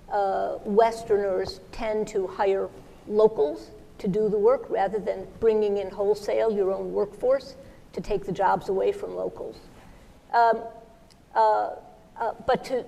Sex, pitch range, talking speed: female, 205-295 Hz, 135 wpm